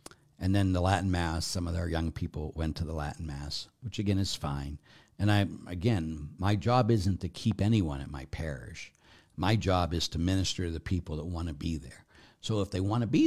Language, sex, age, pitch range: English, male, 60-79, 85-110 Hz